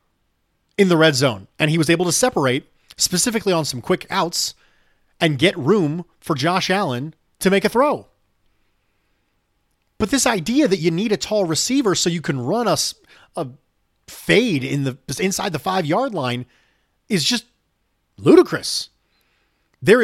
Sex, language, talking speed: male, English, 155 wpm